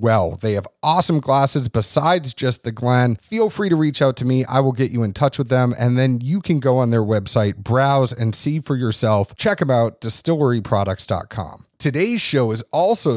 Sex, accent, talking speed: male, American, 205 wpm